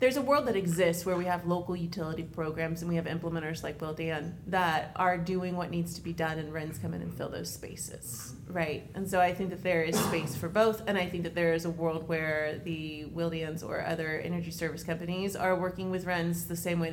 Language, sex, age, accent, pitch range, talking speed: English, female, 30-49, American, 160-200 Hz, 240 wpm